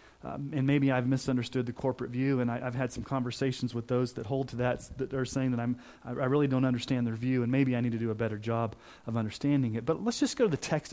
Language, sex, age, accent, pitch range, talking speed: English, male, 30-49, American, 120-145 Hz, 275 wpm